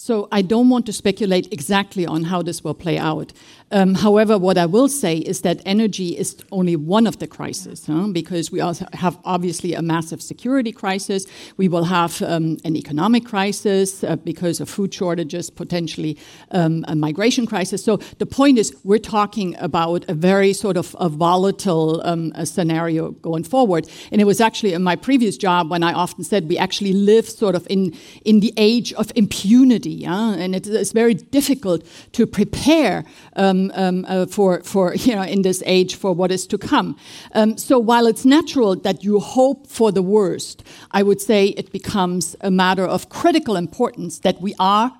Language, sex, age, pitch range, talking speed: English, female, 50-69, 180-225 Hz, 190 wpm